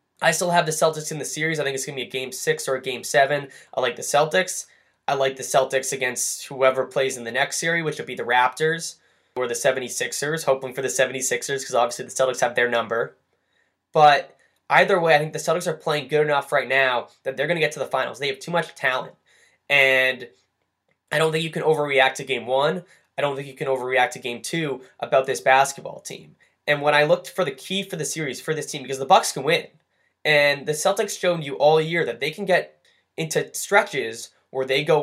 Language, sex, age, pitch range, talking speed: English, male, 10-29, 130-165 Hz, 240 wpm